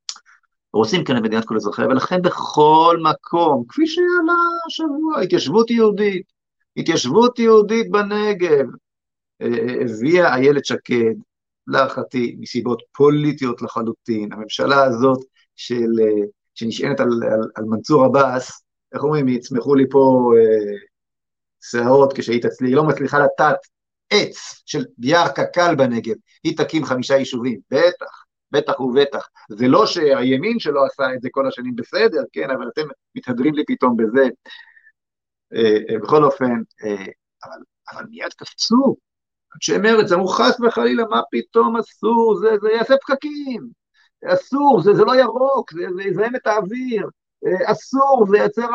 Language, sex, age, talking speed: Hebrew, male, 50-69, 140 wpm